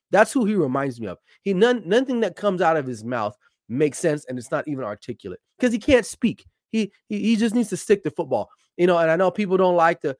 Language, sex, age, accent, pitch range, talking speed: English, male, 30-49, American, 130-205 Hz, 260 wpm